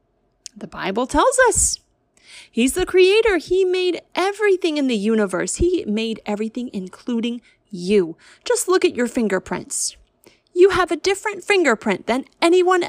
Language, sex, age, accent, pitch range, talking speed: English, female, 30-49, American, 210-340 Hz, 140 wpm